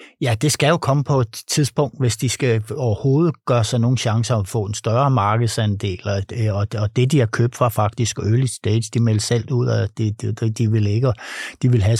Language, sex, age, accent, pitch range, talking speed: Danish, male, 60-79, native, 105-125 Hz, 205 wpm